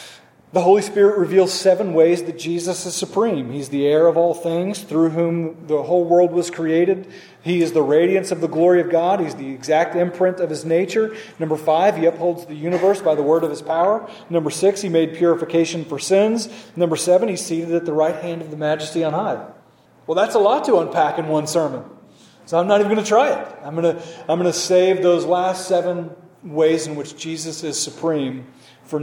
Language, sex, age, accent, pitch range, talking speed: English, male, 30-49, American, 155-195 Hz, 215 wpm